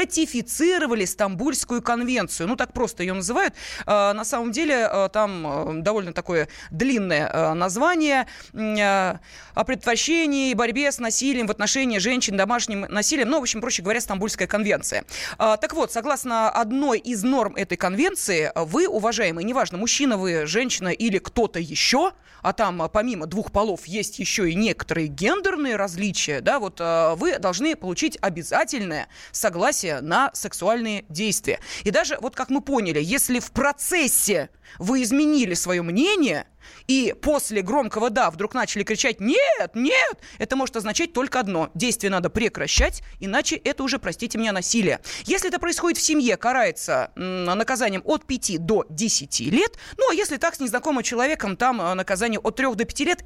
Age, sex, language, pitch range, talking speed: 20-39, female, Russian, 200-275 Hz, 150 wpm